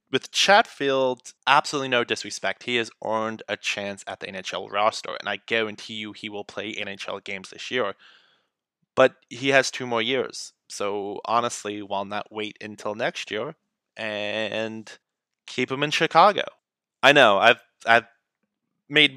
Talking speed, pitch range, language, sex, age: 155 wpm, 105-135 Hz, English, male, 20-39